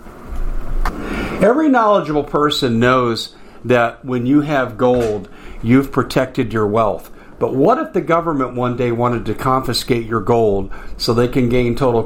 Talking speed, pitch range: 150 wpm, 115-140 Hz